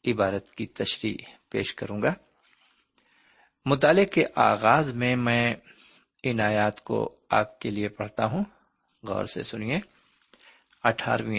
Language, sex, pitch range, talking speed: Urdu, male, 105-140 Hz, 120 wpm